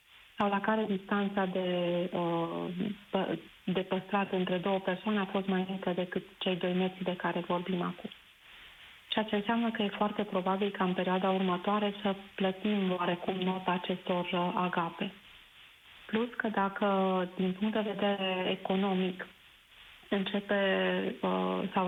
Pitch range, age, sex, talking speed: 185-205 Hz, 30-49, female, 135 wpm